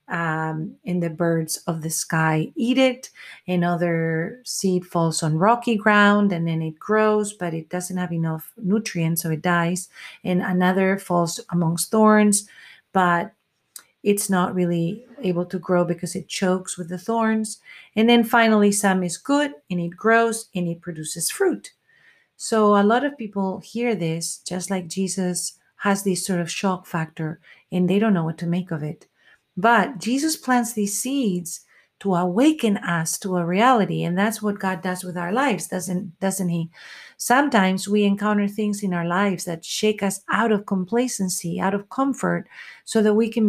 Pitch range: 175-215 Hz